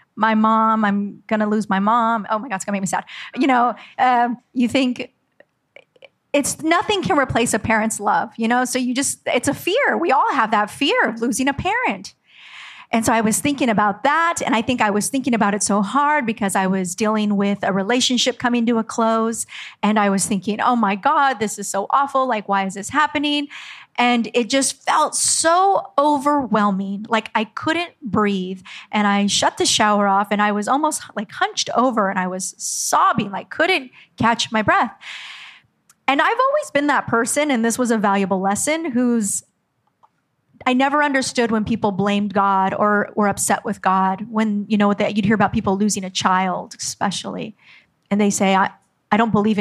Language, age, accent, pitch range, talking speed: English, 30-49, American, 205-255 Hz, 200 wpm